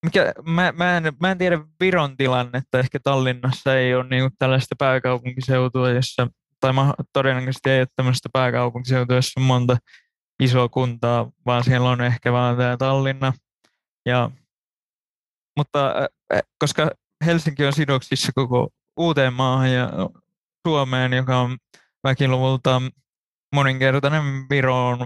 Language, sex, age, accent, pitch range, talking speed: Finnish, male, 20-39, native, 125-140 Hz, 125 wpm